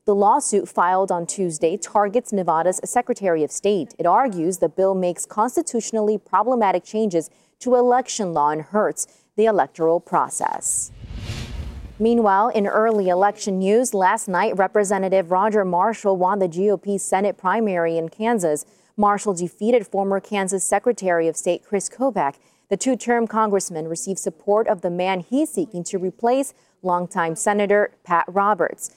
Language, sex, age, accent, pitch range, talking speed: English, female, 30-49, American, 180-225 Hz, 140 wpm